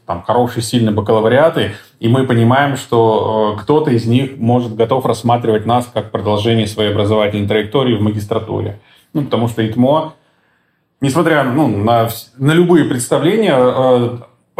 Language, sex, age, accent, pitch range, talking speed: Russian, male, 20-39, native, 115-140 Hz, 135 wpm